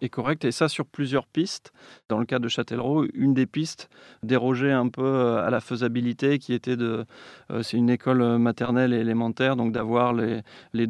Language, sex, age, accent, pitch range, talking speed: French, male, 30-49, French, 120-140 Hz, 185 wpm